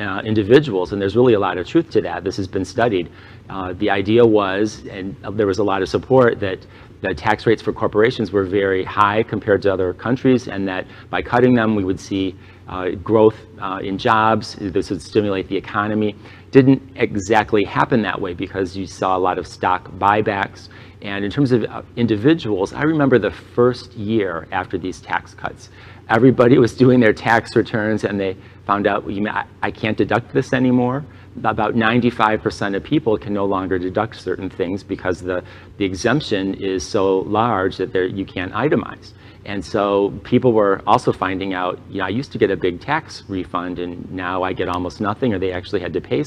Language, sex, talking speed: English, male, 190 wpm